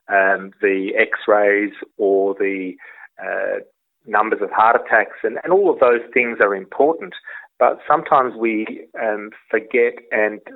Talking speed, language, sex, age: 135 wpm, English, male, 30-49